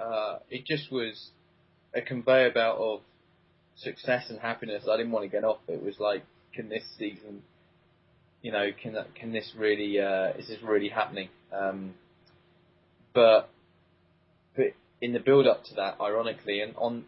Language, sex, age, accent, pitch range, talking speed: English, male, 20-39, British, 95-115 Hz, 160 wpm